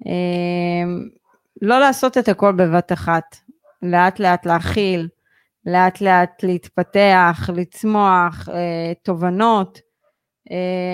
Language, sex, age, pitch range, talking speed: Hebrew, female, 30-49, 180-215 Hz, 100 wpm